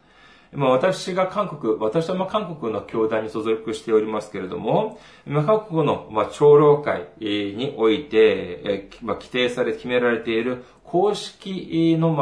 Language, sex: Japanese, male